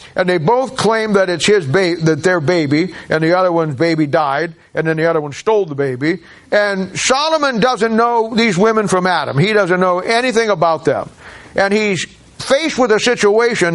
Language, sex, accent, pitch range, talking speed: English, male, American, 160-205 Hz, 195 wpm